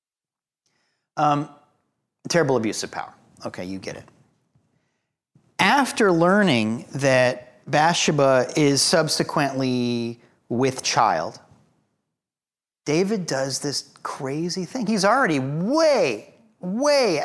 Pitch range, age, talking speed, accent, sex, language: 125-165 Hz, 30-49, 90 wpm, American, male, English